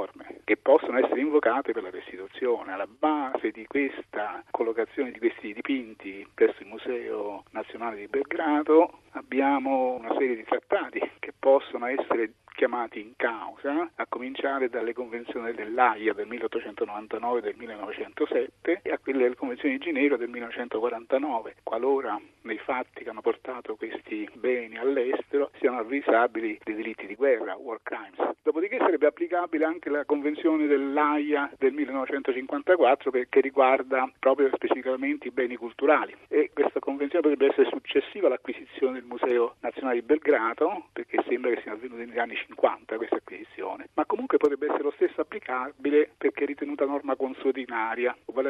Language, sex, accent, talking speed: Italian, male, native, 145 wpm